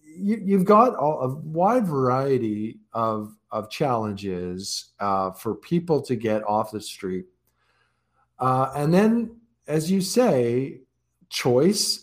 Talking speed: 115 wpm